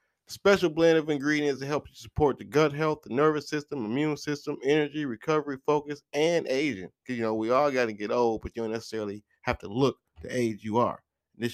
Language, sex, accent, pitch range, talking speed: English, male, American, 125-150 Hz, 215 wpm